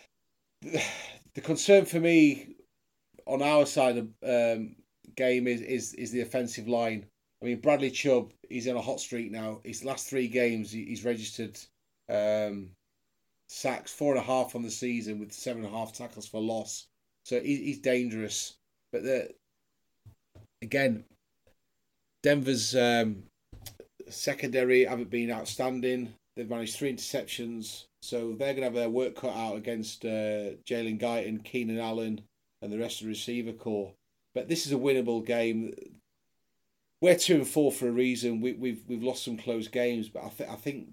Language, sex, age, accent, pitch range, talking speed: English, male, 30-49, British, 110-125 Hz, 165 wpm